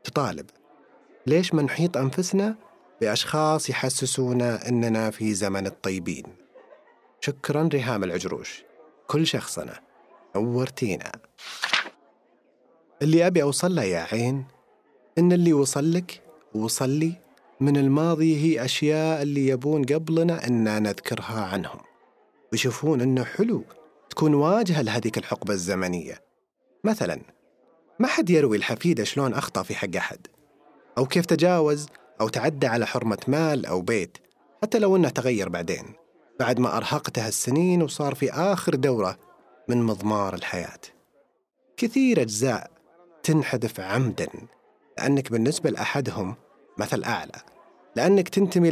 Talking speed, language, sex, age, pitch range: 110 wpm, Arabic, male, 30-49, 115-160 Hz